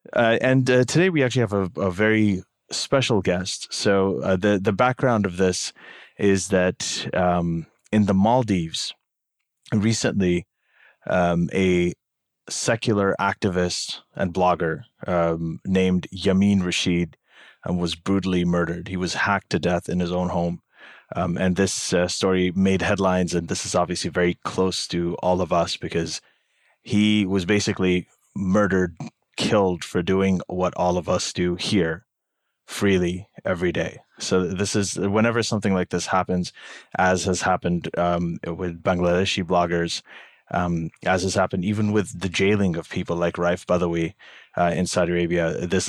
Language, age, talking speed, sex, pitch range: English, 30-49, 155 wpm, male, 90-100 Hz